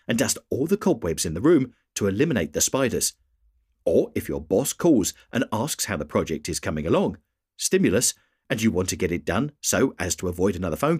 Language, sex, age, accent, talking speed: English, male, 50-69, British, 215 wpm